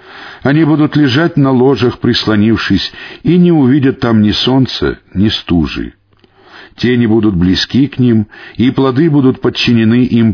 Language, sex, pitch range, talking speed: Russian, male, 100-135 Hz, 140 wpm